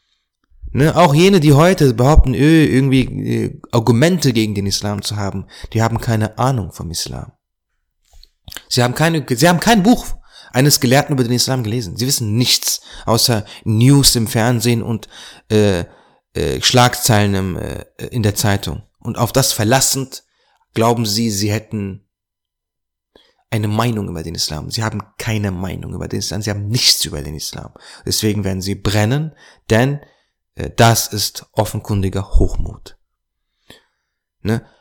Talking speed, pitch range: 145 wpm, 105-140 Hz